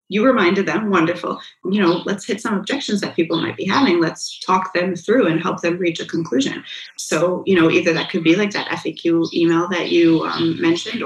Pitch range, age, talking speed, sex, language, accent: 170-225 Hz, 30-49, 215 wpm, female, English, American